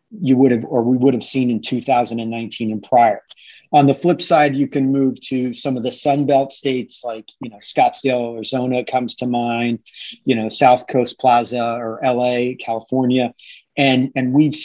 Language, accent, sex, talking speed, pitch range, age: English, American, male, 180 wpm, 120-140 Hz, 40-59